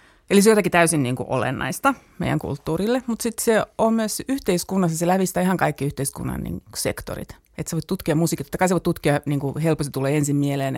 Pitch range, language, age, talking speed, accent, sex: 145-190 Hz, Finnish, 30-49, 205 wpm, native, female